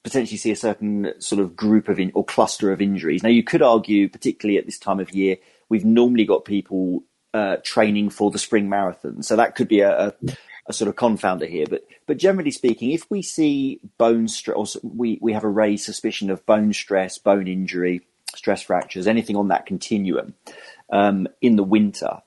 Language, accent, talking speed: English, British, 200 wpm